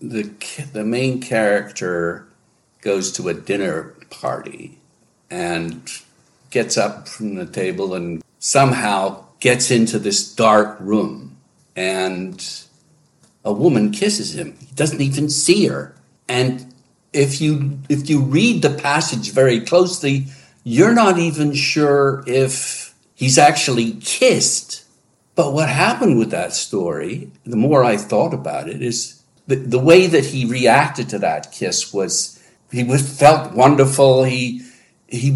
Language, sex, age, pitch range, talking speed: English, male, 60-79, 115-155 Hz, 130 wpm